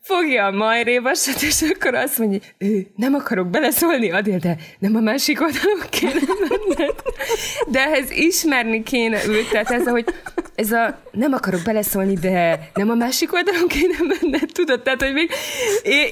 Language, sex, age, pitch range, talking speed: Hungarian, female, 20-39, 195-275 Hz, 170 wpm